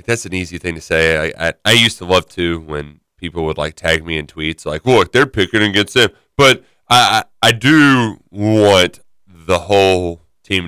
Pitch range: 90-125 Hz